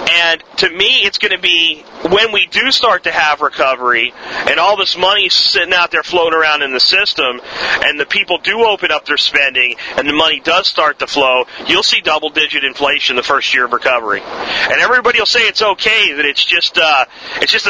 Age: 40-59